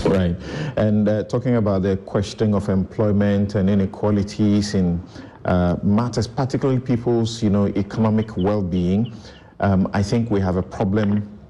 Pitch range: 100-115 Hz